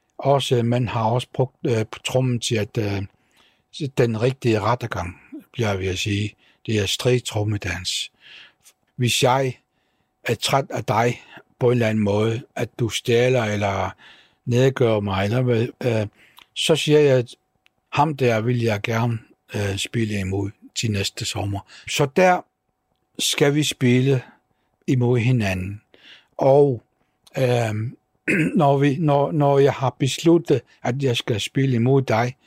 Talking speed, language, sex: 150 wpm, Danish, male